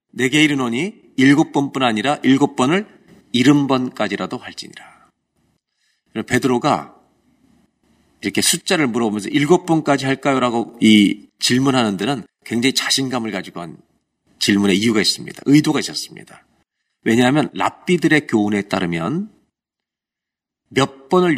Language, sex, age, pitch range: Korean, male, 40-59, 115-160 Hz